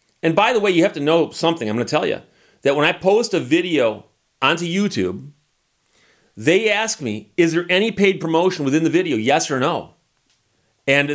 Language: English